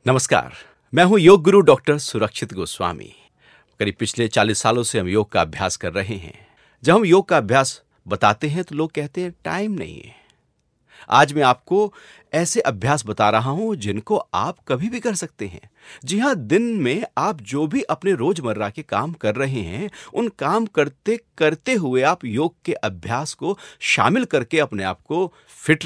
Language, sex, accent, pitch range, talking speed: Hindi, male, native, 105-170 Hz, 185 wpm